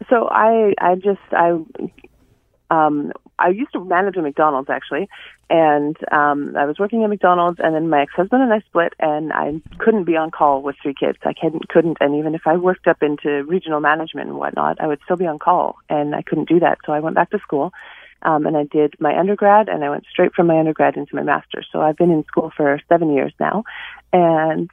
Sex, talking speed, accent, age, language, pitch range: female, 225 wpm, American, 30-49, English, 150-190 Hz